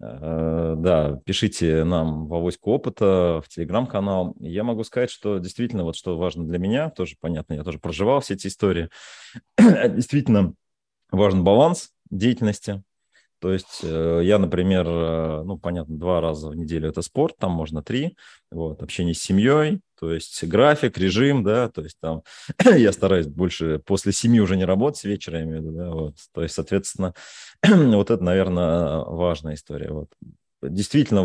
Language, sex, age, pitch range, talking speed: Russian, male, 30-49, 85-105 Hz, 150 wpm